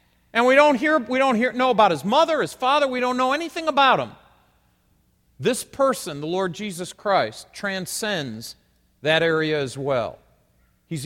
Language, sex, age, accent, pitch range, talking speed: English, male, 40-59, American, 160-235 Hz, 170 wpm